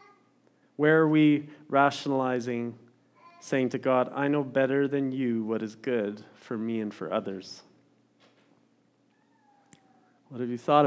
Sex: male